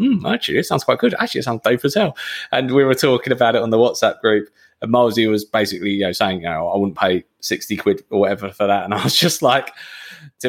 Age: 20-39